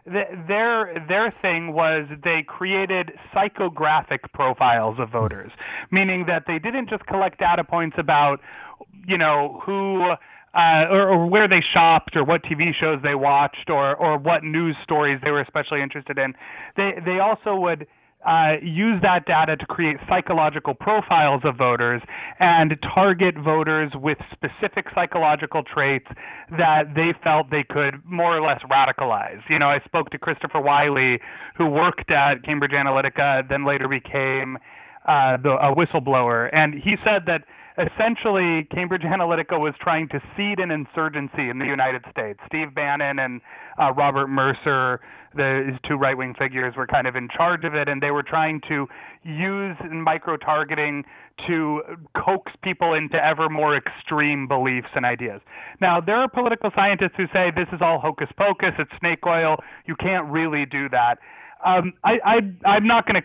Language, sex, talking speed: English, male, 160 wpm